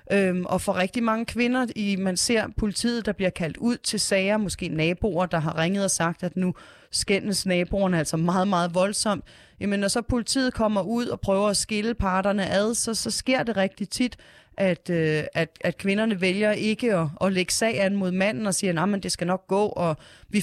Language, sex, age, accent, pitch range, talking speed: Danish, female, 30-49, native, 180-220 Hz, 200 wpm